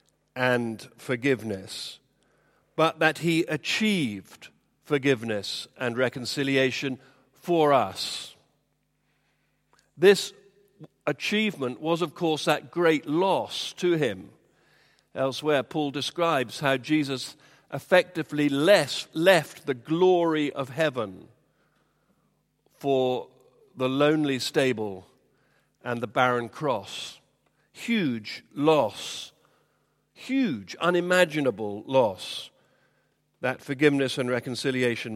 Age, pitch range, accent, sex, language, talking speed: 50-69, 130-165 Hz, British, male, English, 85 wpm